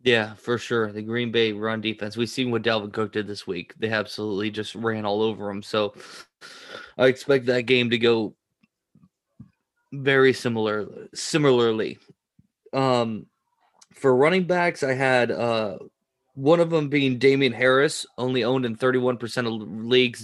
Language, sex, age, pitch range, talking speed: English, male, 20-39, 115-140 Hz, 155 wpm